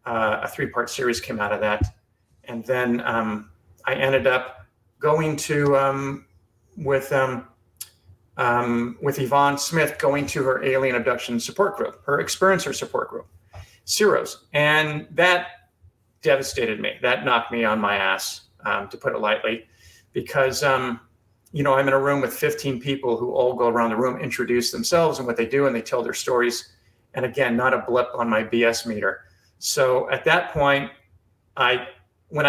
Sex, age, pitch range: male, 40-59, 110-140 Hz